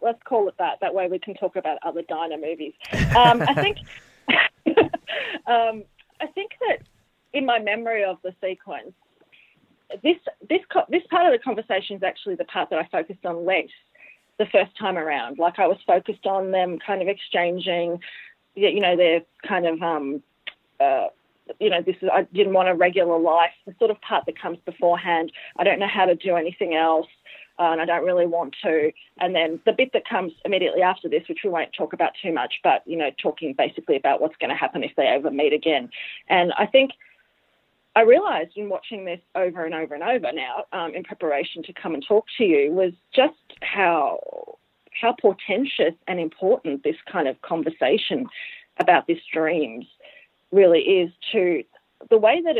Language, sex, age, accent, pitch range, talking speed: English, female, 30-49, Australian, 175-285 Hz, 190 wpm